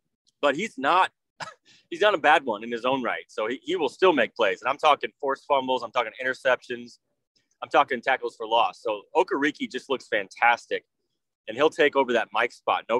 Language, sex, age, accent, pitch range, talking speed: English, male, 30-49, American, 125-155 Hz, 210 wpm